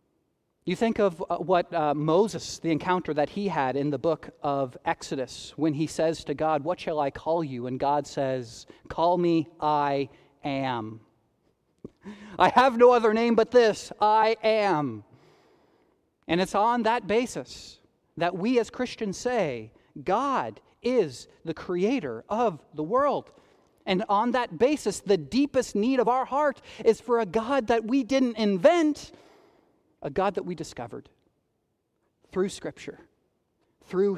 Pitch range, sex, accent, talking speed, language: 155-225 Hz, male, American, 150 wpm, English